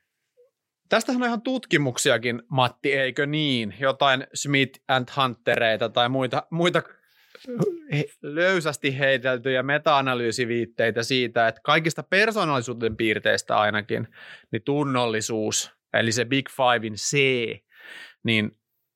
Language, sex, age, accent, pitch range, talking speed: Finnish, male, 30-49, native, 115-150 Hz, 100 wpm